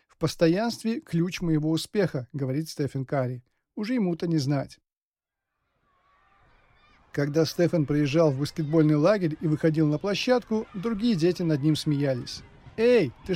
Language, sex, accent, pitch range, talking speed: Russian, male, native, 150-200 Hz, 135 wpm